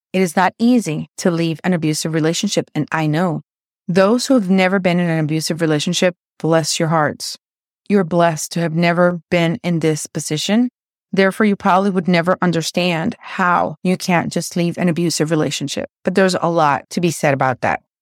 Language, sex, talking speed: English, female, 185 wpm